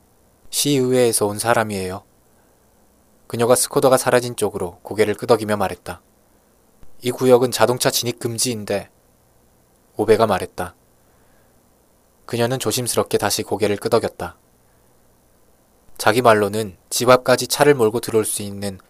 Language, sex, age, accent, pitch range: Korean, male, 20-39, native, 90-120 Hz